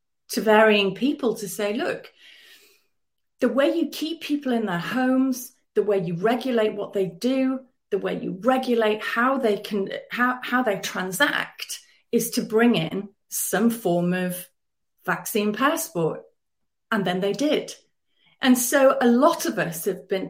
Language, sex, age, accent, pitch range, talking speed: English, female, 30-49, British, 210-300 Hz, 155 wpm